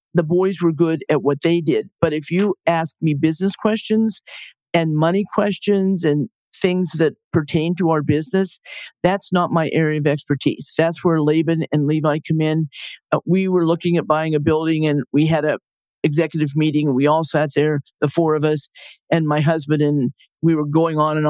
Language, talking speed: English, 195 wpm